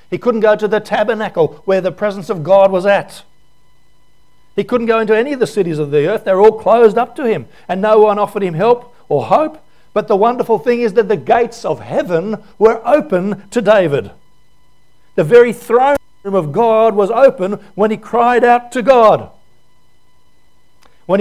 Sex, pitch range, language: male, 200-240 Hz, English